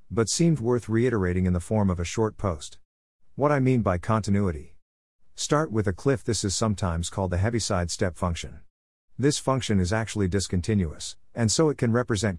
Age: 50-69